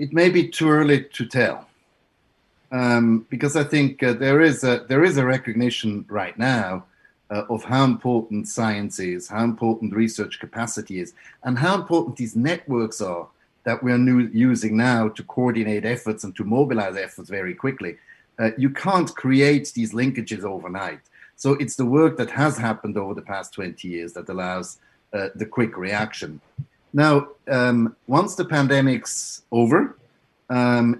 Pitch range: 110-140 Hz